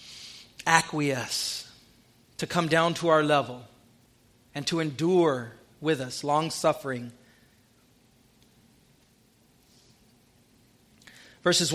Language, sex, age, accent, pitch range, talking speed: English, male, 40-59, American, 130-180 Hz, 75 wpm